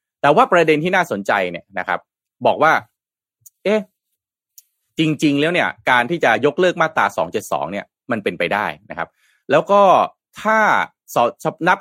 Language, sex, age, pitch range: Thai, male, 30-49, 110-170 Hz